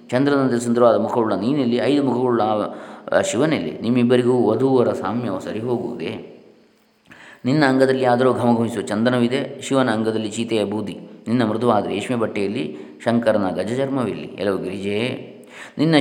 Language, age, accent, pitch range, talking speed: Kannada, 20-39, native, 105-120 Hz, 110 wpm